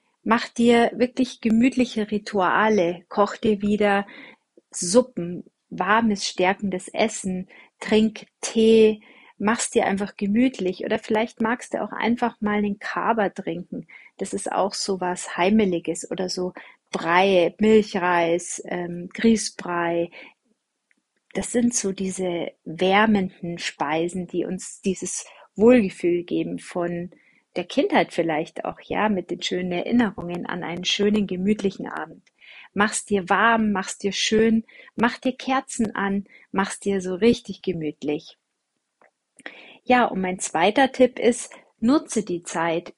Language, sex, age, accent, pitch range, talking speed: German, female, 40-59, German, 185-230 Hz, 125 wpm